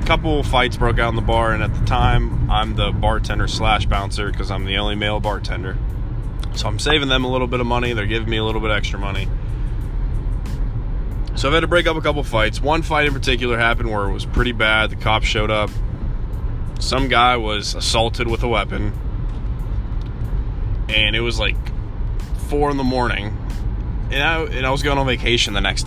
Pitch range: 105-125 Hz